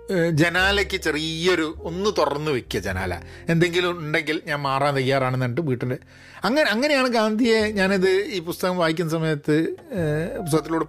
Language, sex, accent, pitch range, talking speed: Malayalam, male, native, 140-210 Hz, 120 wpm